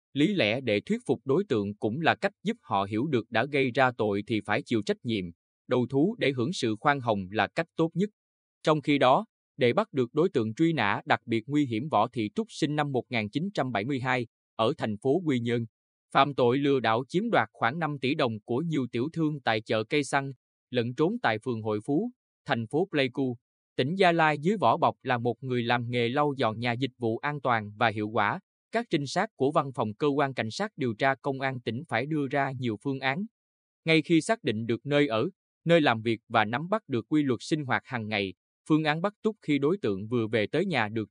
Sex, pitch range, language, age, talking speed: male, 115-150 Hz, Vietnamese, 20-39, 235 wpm